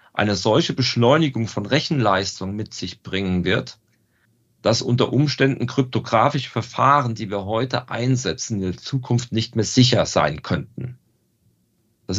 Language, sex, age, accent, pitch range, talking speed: German, male, 40-59, German, 110-135 Hz, 135 wpm